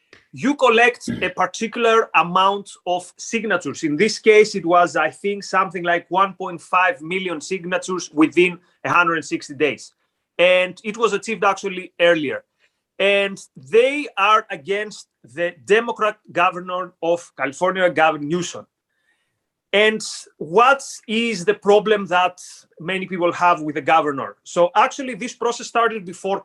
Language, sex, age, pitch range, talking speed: English, male, 30-49, 170-210 Hz, 130 wpm